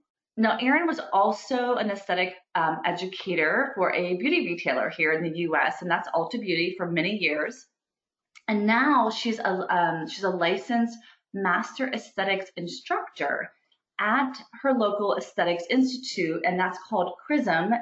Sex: female